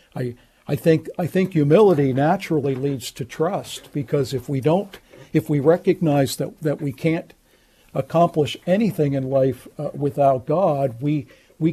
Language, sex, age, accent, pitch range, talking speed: English, male, 60-79, American, 135-160 Hz, 155 wpm